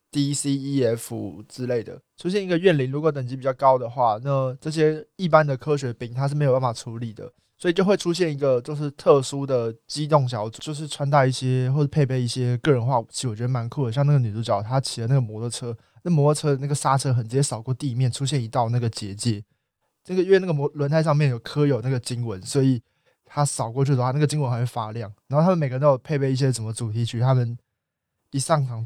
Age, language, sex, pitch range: 20-39, Chinese, male, 120-145 Hz